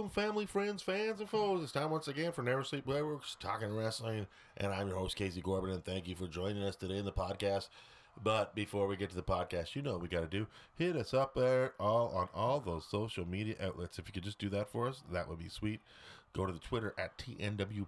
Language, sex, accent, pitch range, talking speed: English, male, American, 95-155 Hz, 250 wpm